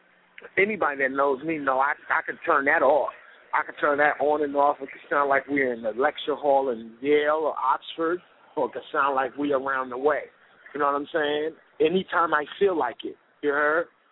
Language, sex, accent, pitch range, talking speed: English, male, American, 140-195 Hz, 220 wpm